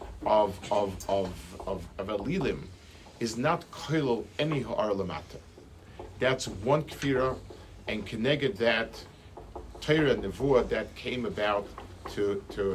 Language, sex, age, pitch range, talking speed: English, male, 50-69, 90-130 Hz, 100 wpm